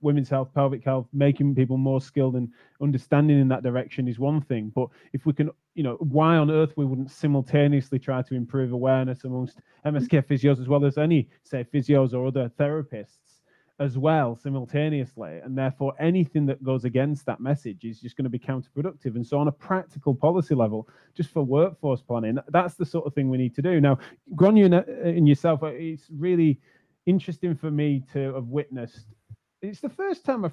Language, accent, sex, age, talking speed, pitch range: English, British, male, 20-39, 190 wpm, 135-170 Hz